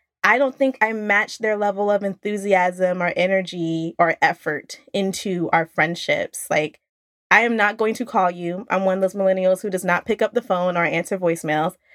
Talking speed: 195 wpm